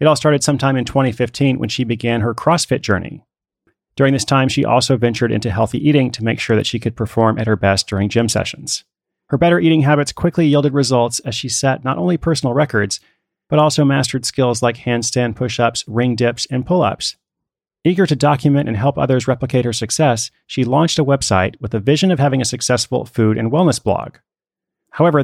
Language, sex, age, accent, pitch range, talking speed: English, male, 30-49, American, 115-145 Hz, 205 wpm